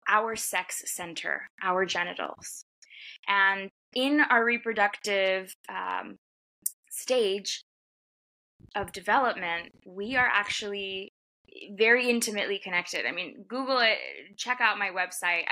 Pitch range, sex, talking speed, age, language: 195-250 Hz, female, 105 wpm, 20-39, English